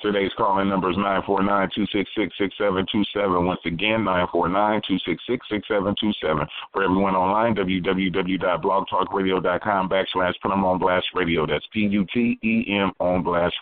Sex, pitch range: male, 90-105 Hz